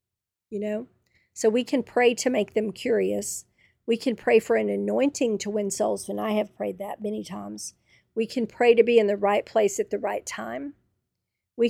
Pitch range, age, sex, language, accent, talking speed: 205-230 Hz, 50-69, female, English, American, 205 wpm